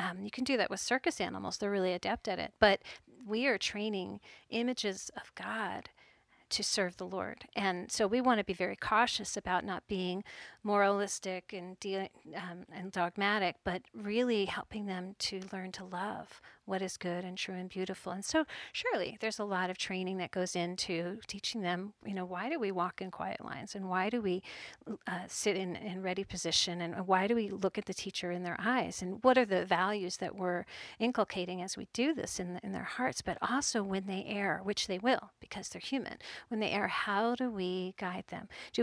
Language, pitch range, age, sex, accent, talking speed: English, 180-215 Hz, 40-59, female, American, 210 wpm